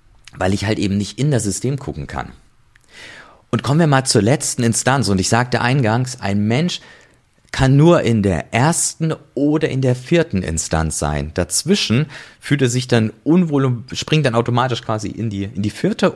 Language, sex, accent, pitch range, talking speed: German, male, German, 100-135 Hz, 180 wpm